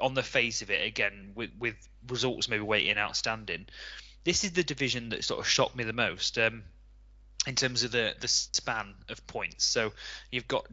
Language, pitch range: English, 105-120 Hz